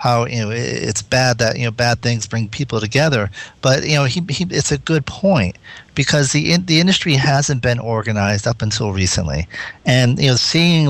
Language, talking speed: English, 205 wpm